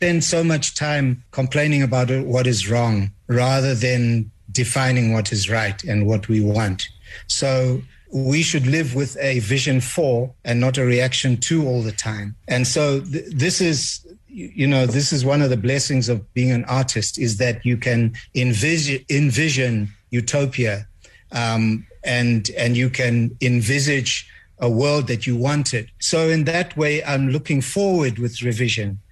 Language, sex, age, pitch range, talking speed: English, male, 60-79, 120-145 Hz, 160 wpm